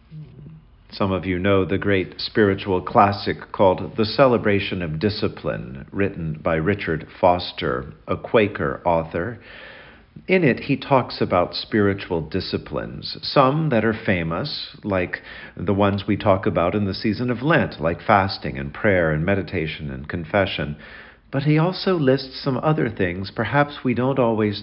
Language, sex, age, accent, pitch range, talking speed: English, male, 50-69, American, 90-120 Hz, 150 wpm